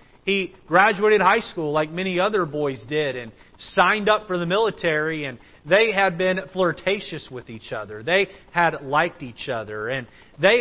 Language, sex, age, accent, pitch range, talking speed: English, male, 40-59, American, 140-190 Hz, 170 wpm